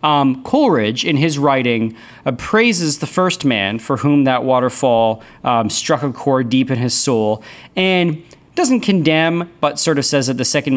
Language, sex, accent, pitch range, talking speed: English, male, American, 115-165 Hz, 175 wpm